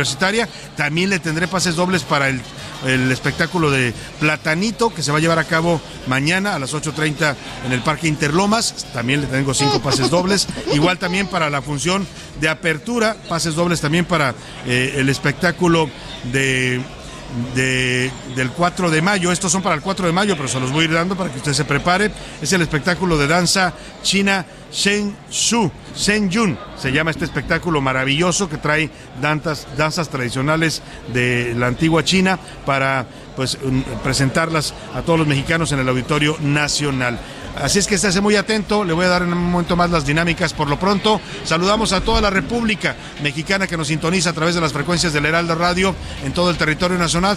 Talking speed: 185 wpm